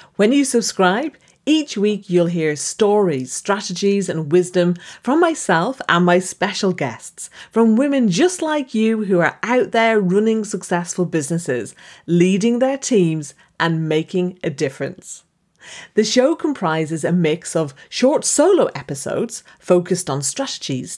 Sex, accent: female, British